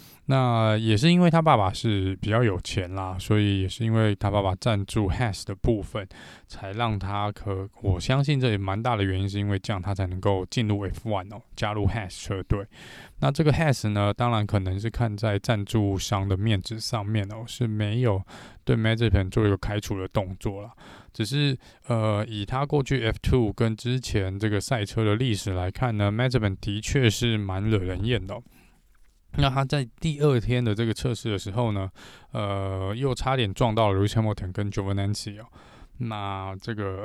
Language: Chinese